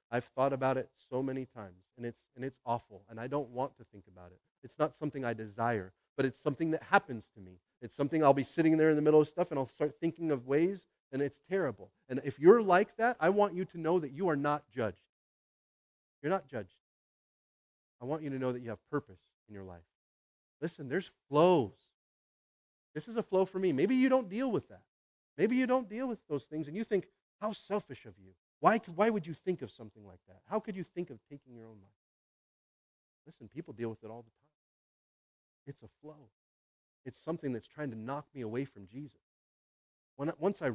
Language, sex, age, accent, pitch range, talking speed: English, male, 30-49, American, 125-195 Hz, 225 wpm